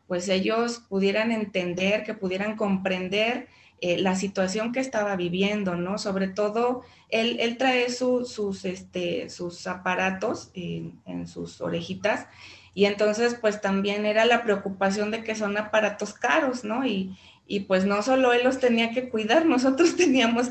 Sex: female